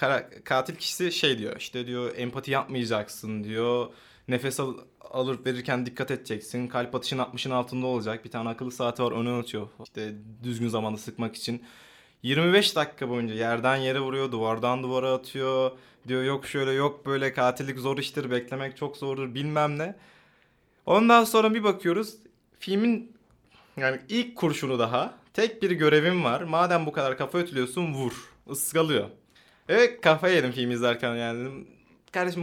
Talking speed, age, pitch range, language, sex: 150 wpm, 20-39, 120-155 Hz, Turkish, male